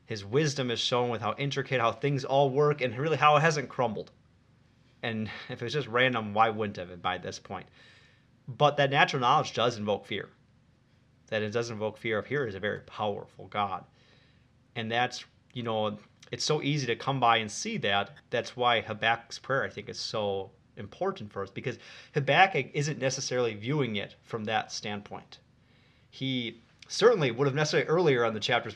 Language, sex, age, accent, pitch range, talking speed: English, male, 30-49, American, 110-135 Hz, 190 wpm